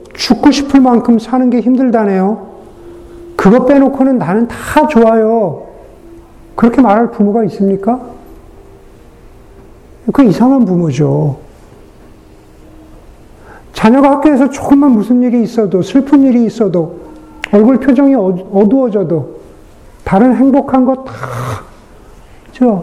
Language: Korean